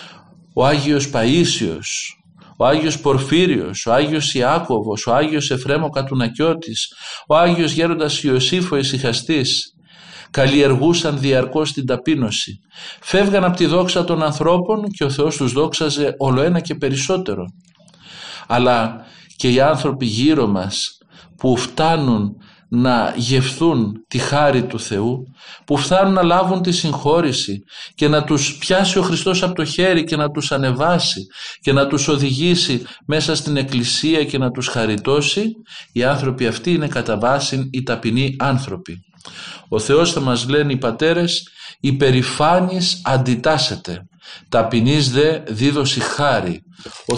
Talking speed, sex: 130 wpm, male